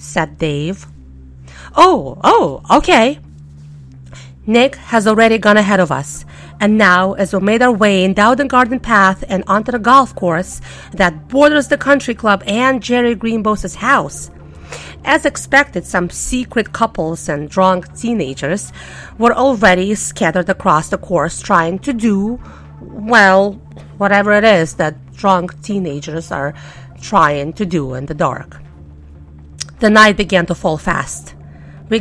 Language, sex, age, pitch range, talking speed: English, female, 40-59, 140-220 Hz, 140 wpm